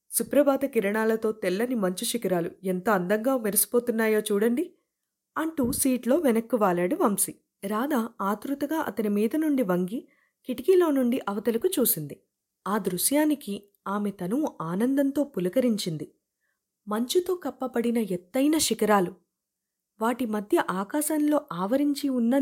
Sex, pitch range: female, 200-275 Hz